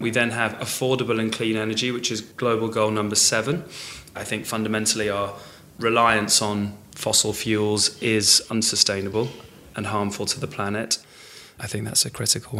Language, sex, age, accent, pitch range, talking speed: English, male, 20-39, British, 100-115 Hz, 155 wpm